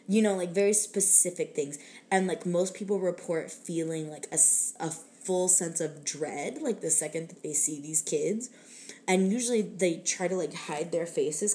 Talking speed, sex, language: 185 wpm, female, English